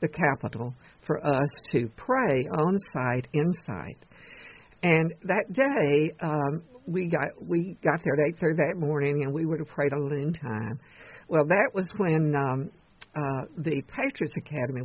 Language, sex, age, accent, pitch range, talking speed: English, female, 60-79, American, 140-170 Hz, 165 wpm